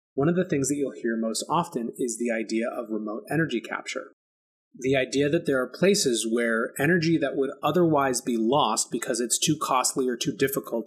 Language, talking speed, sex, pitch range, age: English, 200 wpm, male, 110-135 Hz, 30-49